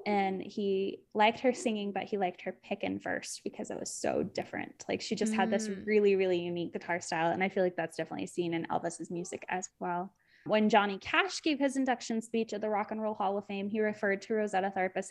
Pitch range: 185-240 Hz